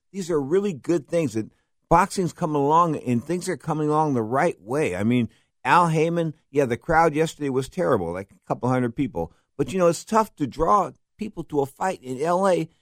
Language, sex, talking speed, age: English, male, 210 wpm, 50-69